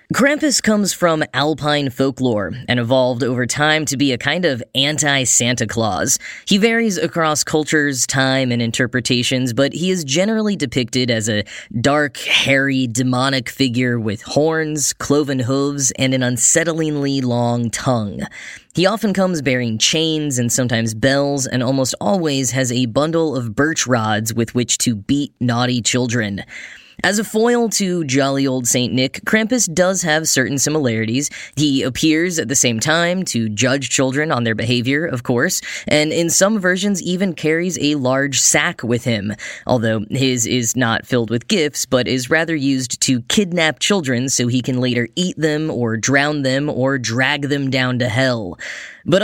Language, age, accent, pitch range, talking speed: English, 10-29, American, 125-155 Hz, 165 wpm